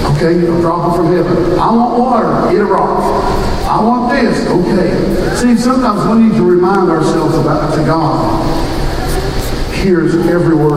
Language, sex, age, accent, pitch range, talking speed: English, male, 50-69, American, 160-215 Hz, 160 wpm